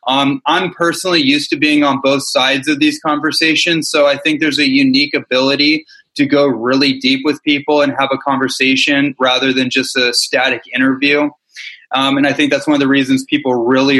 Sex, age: male, 20-39